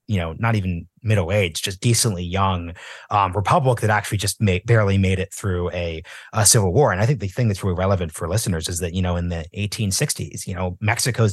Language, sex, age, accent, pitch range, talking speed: English, male, 30-49, American, 95-120 Hz, 230 wpm